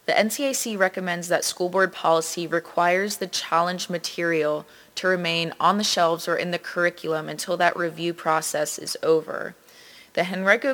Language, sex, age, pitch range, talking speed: English, female, 20-39, 165-190 Hz, 155 wpm